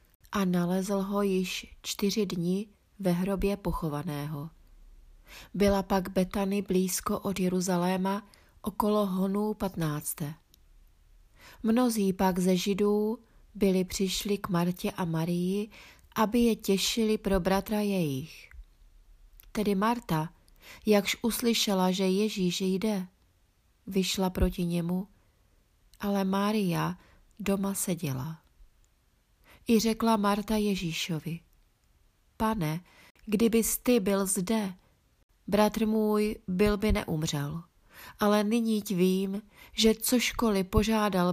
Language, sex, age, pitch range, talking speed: Czech, female, 30-49, 170-210 Hz, 100 wpm